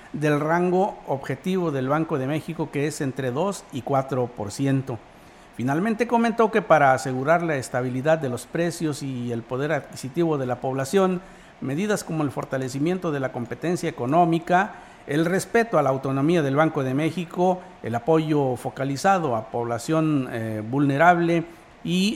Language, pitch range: Spanish, 130-170 Hz